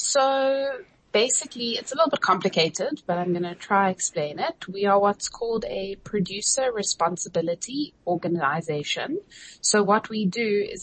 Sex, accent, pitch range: female, South African, 170-205 Hz